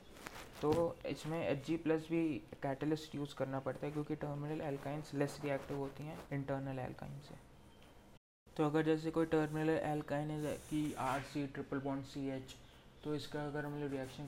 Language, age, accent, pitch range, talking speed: Hindi, 20-39, native, 140-165 Hz, 180 wpm